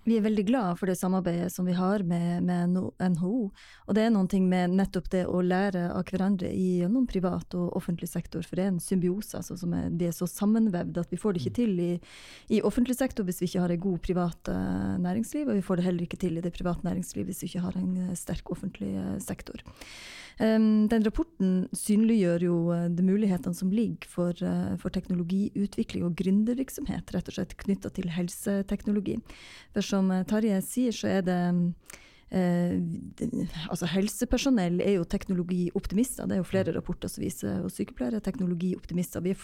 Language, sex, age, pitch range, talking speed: English, female, 30-49, 175-205 Hz, 200 wpm